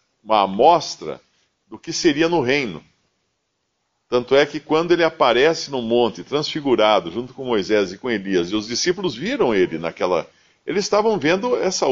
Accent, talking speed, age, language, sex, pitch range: Brazilian, 160 wpm, 50-69, Portuguese, male, 110-175 Hz